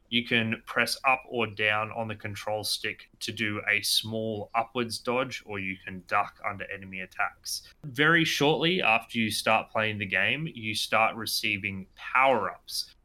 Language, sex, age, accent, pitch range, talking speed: English, male, 20-39, Australian, 105-125 Hz, 160 wpm